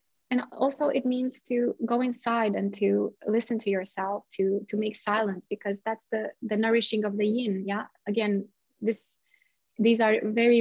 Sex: female